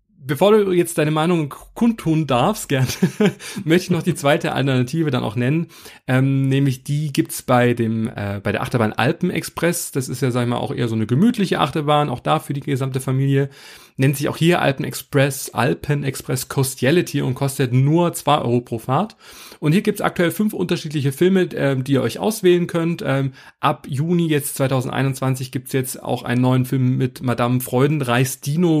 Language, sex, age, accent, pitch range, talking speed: German, male, 30-49, German, 130-165 Hz, 195 wpm